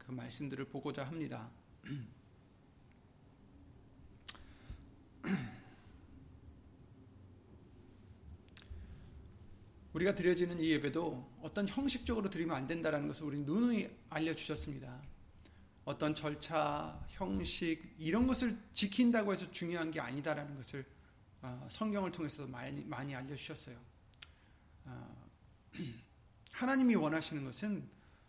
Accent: native